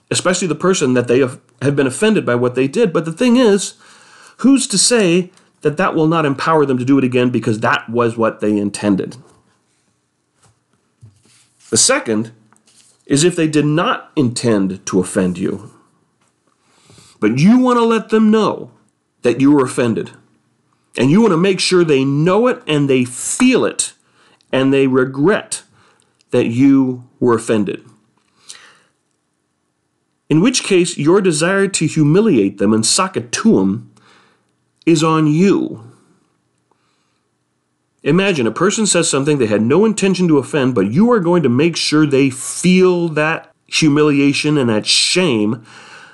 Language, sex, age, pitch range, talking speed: English, male, 40-59, 110-180 Hz, 150 wpm